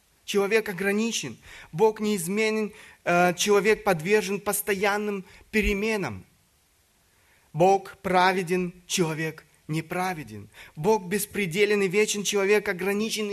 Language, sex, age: Russian, male, 20-39